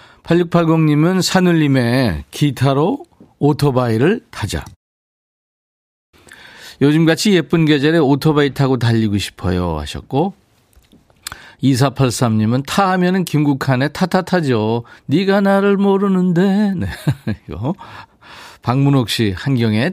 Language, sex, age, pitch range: Korean, male, 40-59, 100-150 Hz